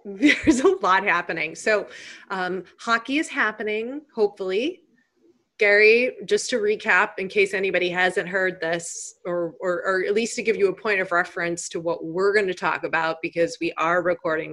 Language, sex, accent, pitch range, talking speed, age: English, female, American, 170-225 Hz, 180 wpm, 20-39